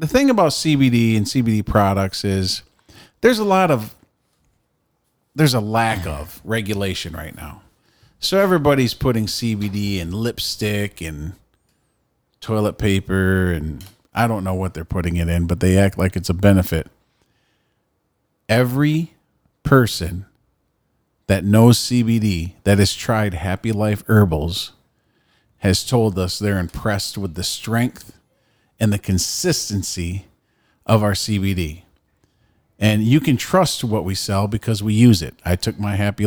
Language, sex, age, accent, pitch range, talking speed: English, male, 40-59, American, 95-120 Hz, 140 wpm